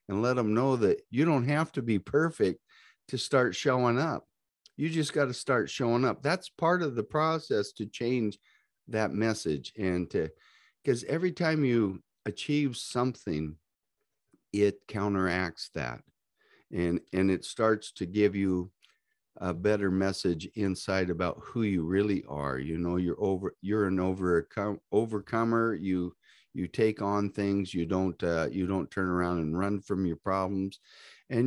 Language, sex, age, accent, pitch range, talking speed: English, male, 50-69, American, 95-120 Hz, 160 wpm